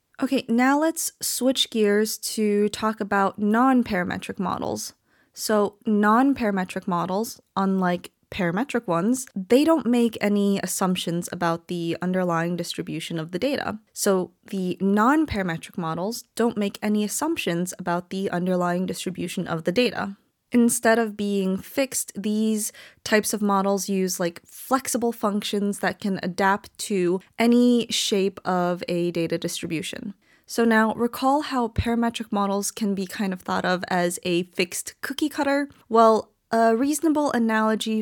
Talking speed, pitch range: 135 wpm, 185-235 Hz